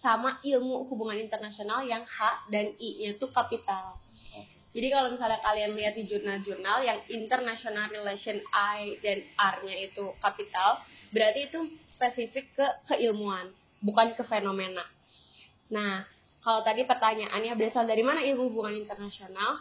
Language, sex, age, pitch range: Indonesian, female, 20-39, 205-245 Hz